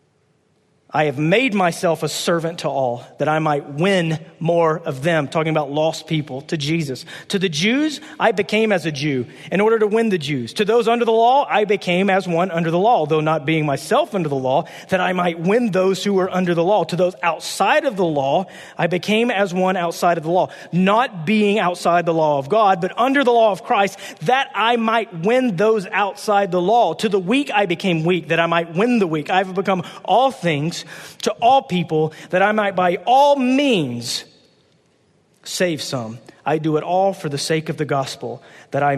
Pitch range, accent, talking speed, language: 150-195 Hz, American, 215 wpm, English